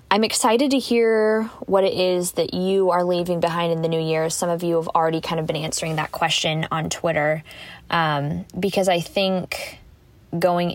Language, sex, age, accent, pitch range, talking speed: English, female, 20-39, American, 165-220 Hz, 190 wpm